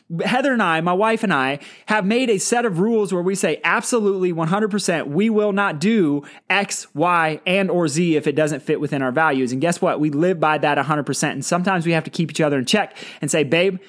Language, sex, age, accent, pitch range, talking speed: English, male, 20-39, American, 155-200 Hz, 240 wpm